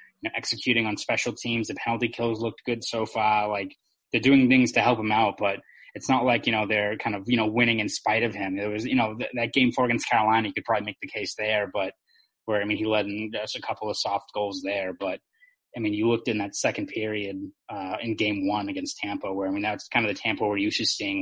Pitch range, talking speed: 105-120 Hz, 270 wpm